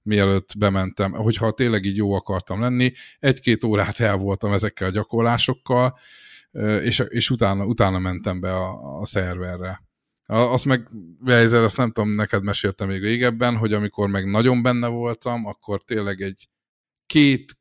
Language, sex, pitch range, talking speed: Hungarian, male, 100-120 Hz, 145 wpm